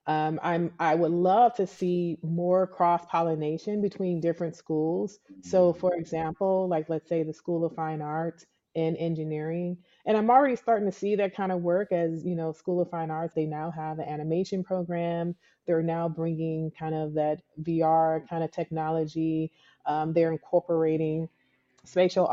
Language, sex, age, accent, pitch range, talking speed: English, female, 30-49, American, 160-185 Hz, 165 wpm